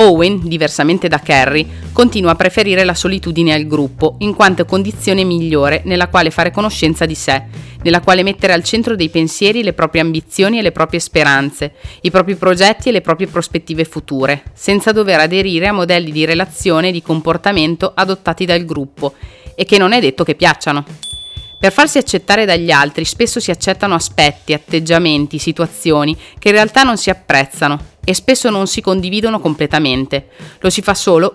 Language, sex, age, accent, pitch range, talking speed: Italian, female, 30-49, native, 155-195 Hz, 170 wpm